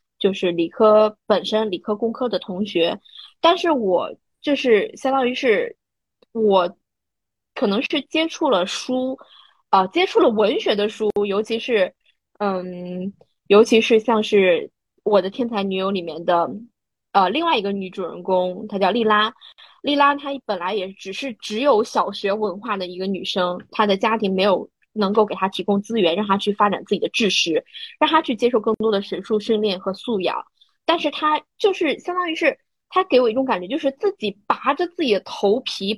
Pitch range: 200-275 Hz